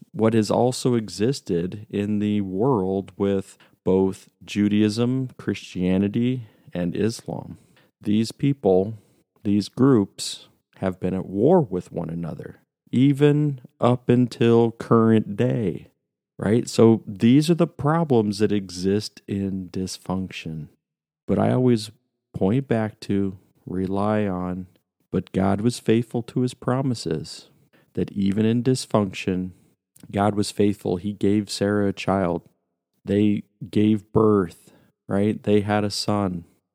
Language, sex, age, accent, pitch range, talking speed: English, male, 40-59, American, 95-110 Hz, 120 wpm